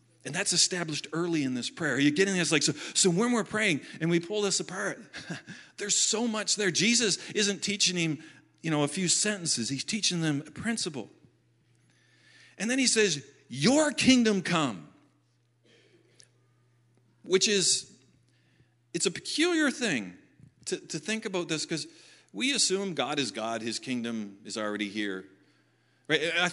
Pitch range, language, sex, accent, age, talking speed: 125-190 Hz, English, male, American, 40-59, 160 wpm